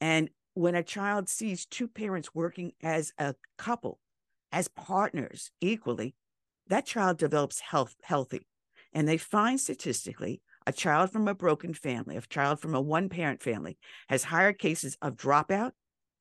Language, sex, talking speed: English, female, 145 wpm